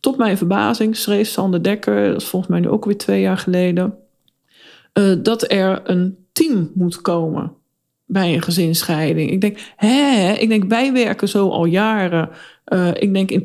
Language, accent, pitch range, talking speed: Dutch, Dutch, 180-225 Hz, 170 wpm